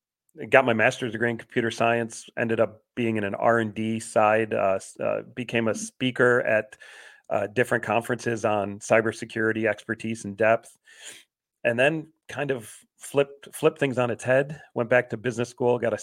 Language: English